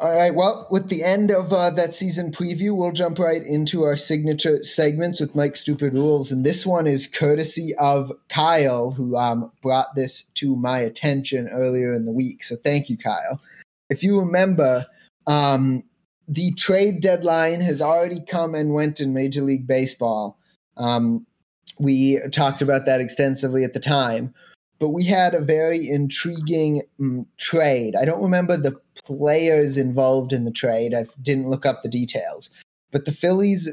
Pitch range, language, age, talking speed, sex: 130-170 Hz, English, 20-39, 170 wpm, male